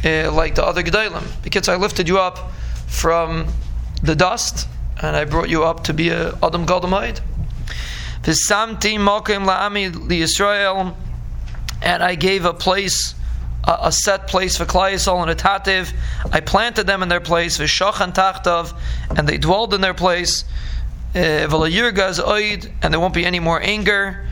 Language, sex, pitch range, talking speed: English, male, 145-190 Hz, 155 wpm